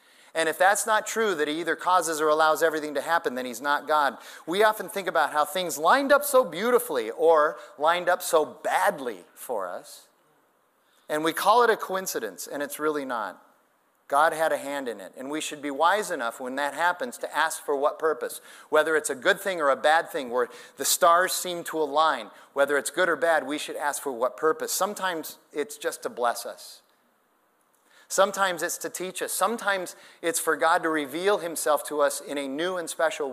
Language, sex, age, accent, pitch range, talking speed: English, male, 30-49, American, 150-200 Hz, 210 wpm